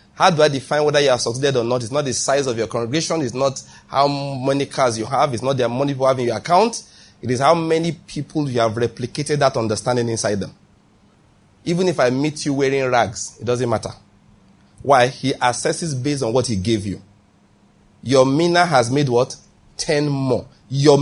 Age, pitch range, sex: 30-49, 115-150 Hz, male